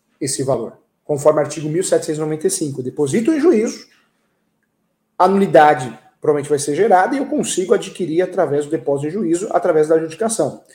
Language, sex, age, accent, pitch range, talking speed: Portuguese, male, 40-59, Brazilian, 145-195 Hz, 155 wpm